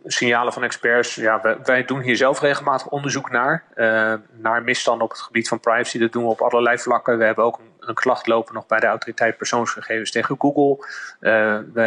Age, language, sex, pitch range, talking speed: 30-49, Dutch, male, 110-125 Hz, 205 wpm